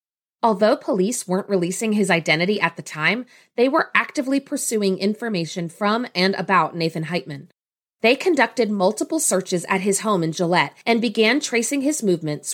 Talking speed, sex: 160 wpm, female